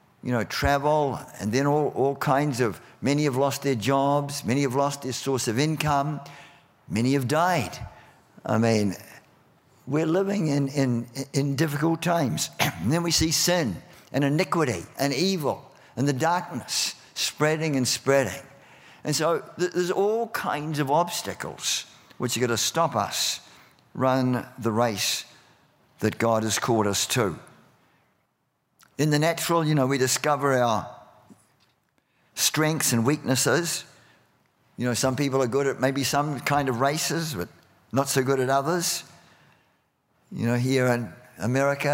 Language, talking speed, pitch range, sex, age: English, 150 wpm, 130-155 Hz, male, 50-69